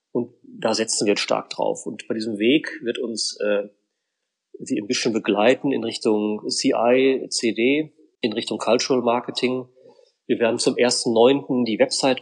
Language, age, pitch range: German, 40-59, 120-150 Hz